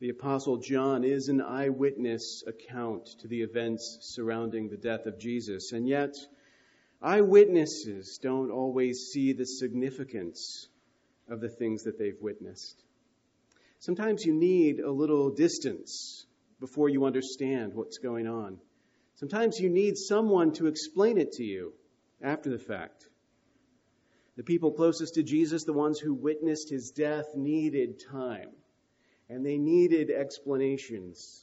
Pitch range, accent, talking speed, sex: 125-165 Hz, American, 135 wpm, male